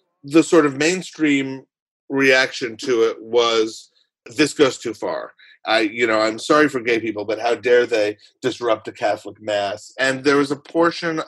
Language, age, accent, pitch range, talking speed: English, 40-59, American, 115-165 Hz, 175 wpm